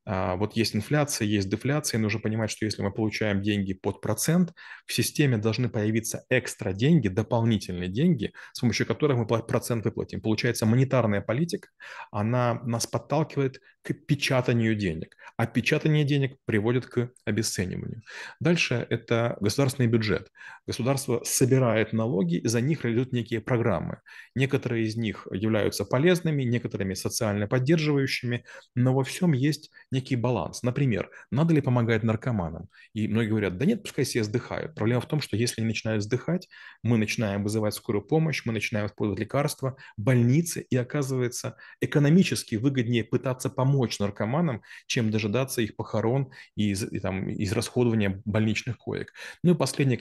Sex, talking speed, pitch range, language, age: male, 145 wpm, 110-135 Hz, Russian, 30-49